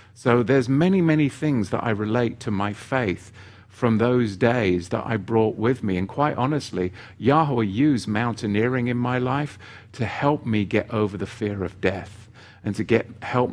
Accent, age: British, 50-69